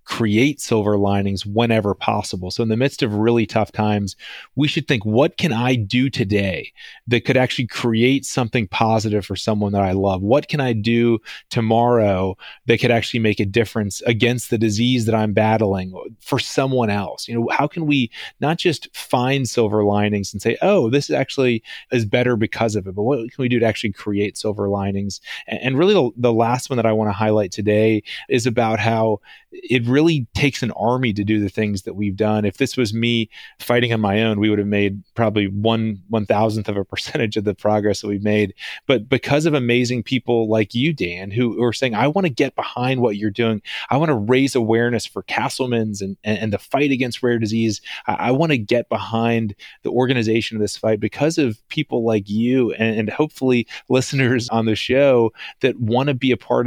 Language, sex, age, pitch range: English, male, 30-49, 105-125 Hz